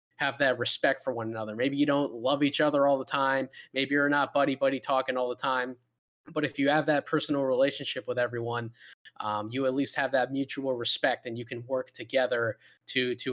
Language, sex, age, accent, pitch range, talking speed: English, male, 20-39, American, 125-145 Hz, 210 wpm